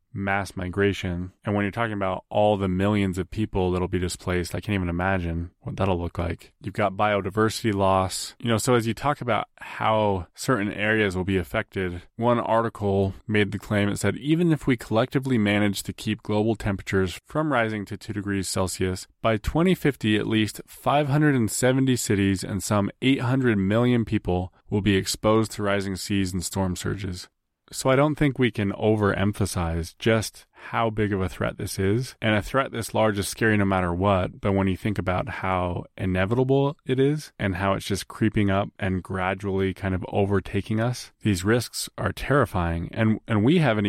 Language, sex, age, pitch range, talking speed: English, male, 20-39, 95-110 Hz, 185 wpm